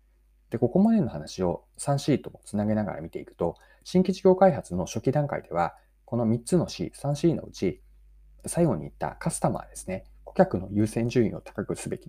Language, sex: Japanese, male